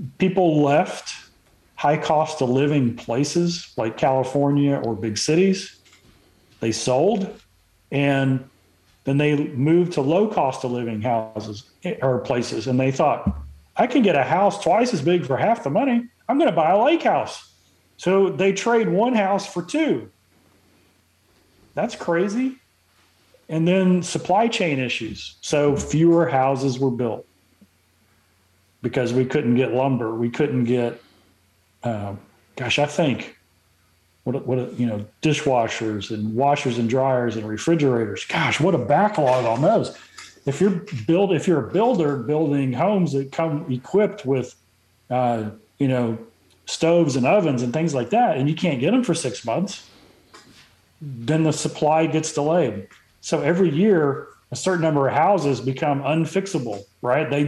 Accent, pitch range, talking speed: American, 110-165 Hz, 150 wpm